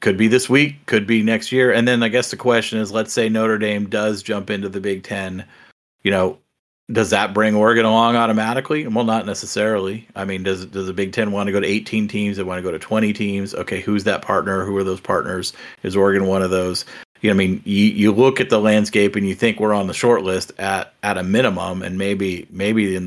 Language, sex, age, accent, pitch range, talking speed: English, male, 40-59, American, 100-115 Hz, 245 wpm